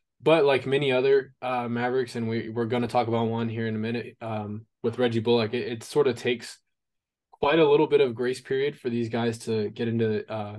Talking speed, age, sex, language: 230 wpm, 20-39, male, English